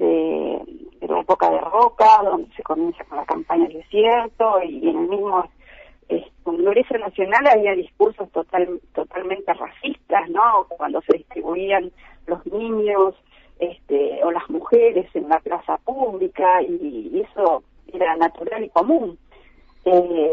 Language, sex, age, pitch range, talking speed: Spanish, female, 40-59, 185-270 Hz, 145 wpm